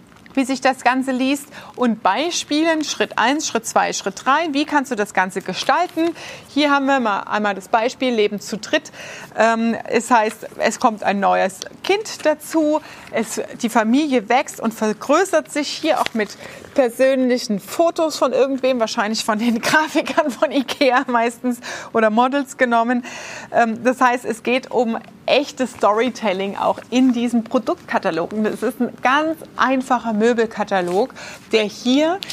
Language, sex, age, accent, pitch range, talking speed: German, female, 30-49, German, 225-285 Hz, 150 wpm